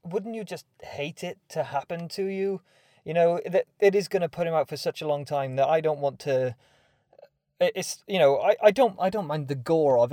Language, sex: English, male